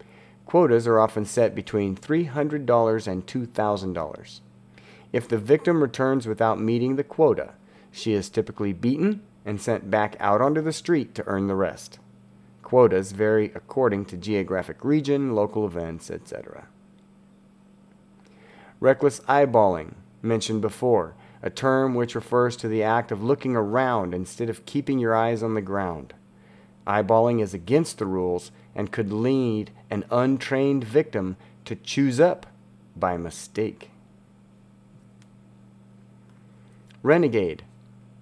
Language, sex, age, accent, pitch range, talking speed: English, male, 40-59, American, 80-120 Hz, 125 wpm